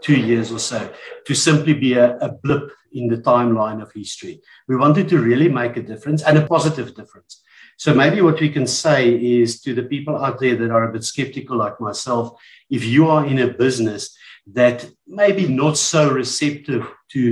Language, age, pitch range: English, 60-79, 120-145 Hz